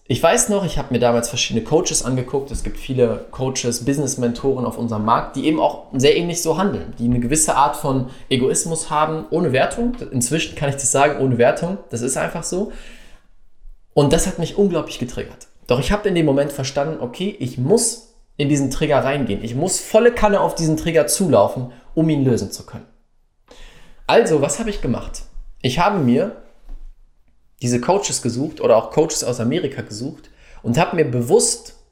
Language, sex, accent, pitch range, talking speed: German, male, German, 120-170 Hz, 185 wpm